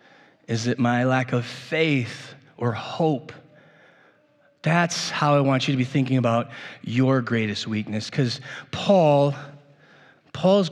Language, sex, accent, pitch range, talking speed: English, male, American, 140-180 Hz, 130 wpm